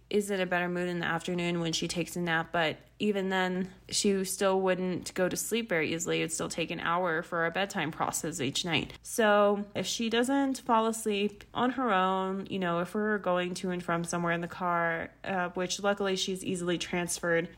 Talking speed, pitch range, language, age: 210 wpm, 175-205 Hz, English, 20-39